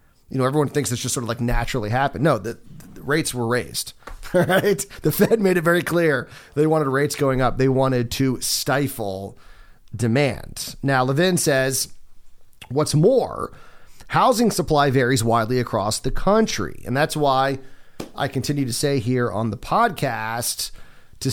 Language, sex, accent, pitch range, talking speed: English, male, American, 120-150 Hz, 165 wpm